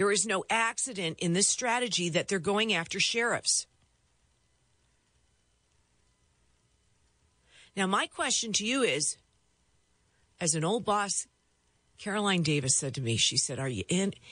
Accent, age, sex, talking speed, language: American, 50-69, female, 135 wpm, English